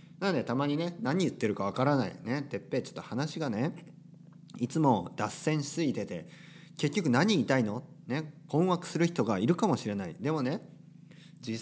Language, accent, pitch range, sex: Japanese, native, 115-165 Hz, male